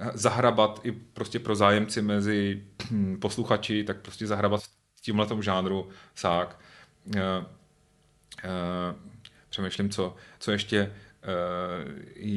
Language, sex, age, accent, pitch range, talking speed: Czech, male, 30-49, native, 95-105 Hz, 100 wpm